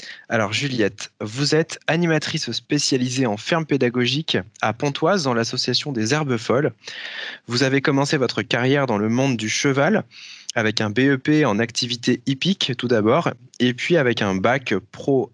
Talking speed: 155 wpm